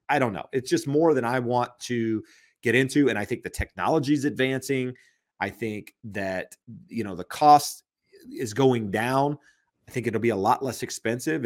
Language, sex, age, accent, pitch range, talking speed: English, male, 30-49, American, 95-130 Hz, 195 wpm